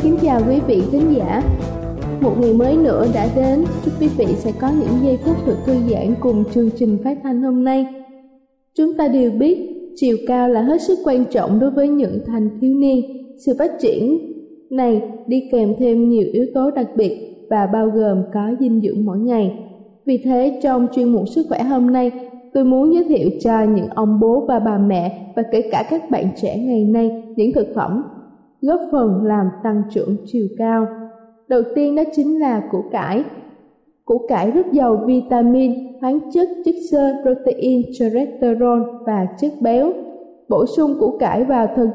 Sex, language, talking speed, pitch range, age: female, Vietnamese, 190 wpm, 225-275 Hz, 20-39